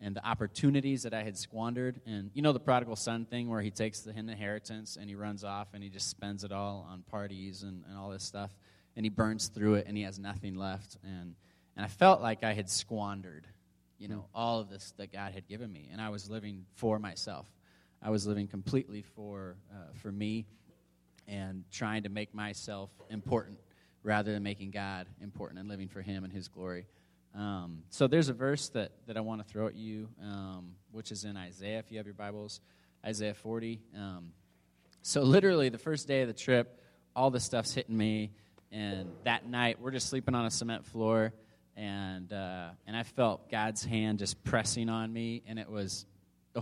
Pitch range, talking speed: 100-115 Hz, 205 wpm